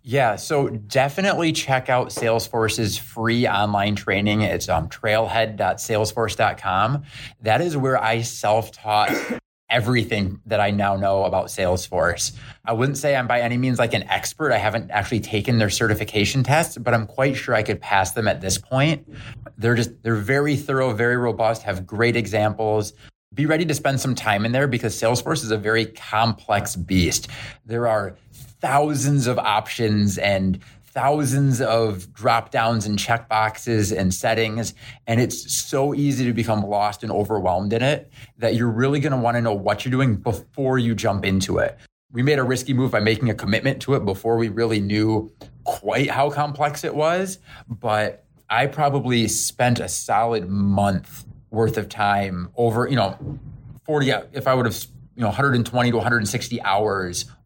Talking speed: 170 wpm